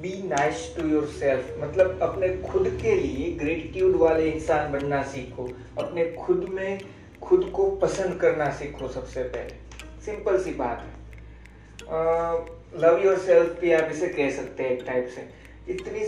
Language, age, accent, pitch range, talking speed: Hindi, 20-39, native, 150-210 Hz, 140 wpm